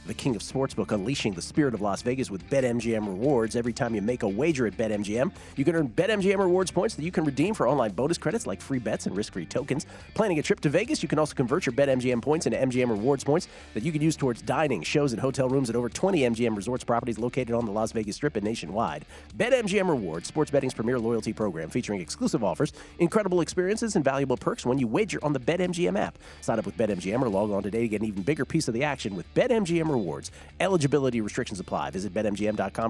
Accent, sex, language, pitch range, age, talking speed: American, male, English, 110-155 Hz, 40-59, 235 wpm